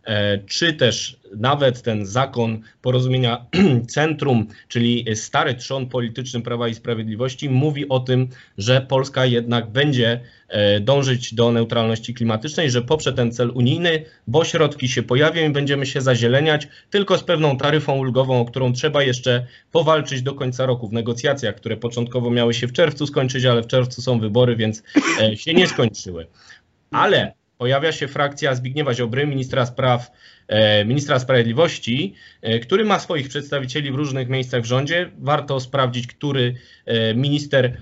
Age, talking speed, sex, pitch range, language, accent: 20-39, 150 wpm, male, 120-145 Hz, Polish, native